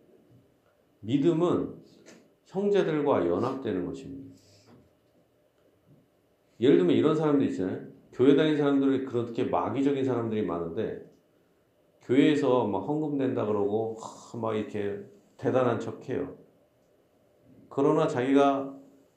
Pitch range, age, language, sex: 125-170 Hz, 40-59, Korean, male